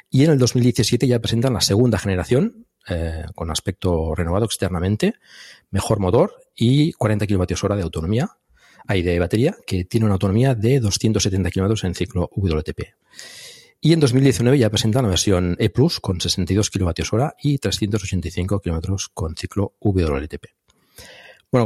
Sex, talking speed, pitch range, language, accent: male, 145 wpm, 90-115 Hz, Spanish, Spanish